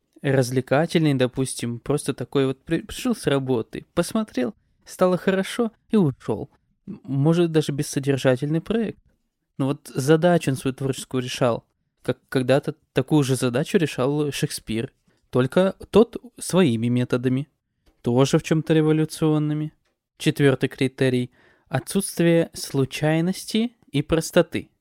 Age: 20-39